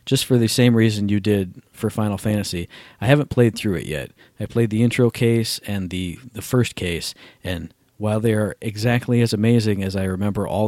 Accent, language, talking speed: American, English, 210 wpm